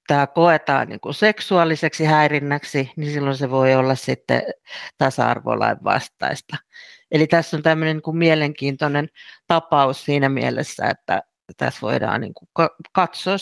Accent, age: native, 50-69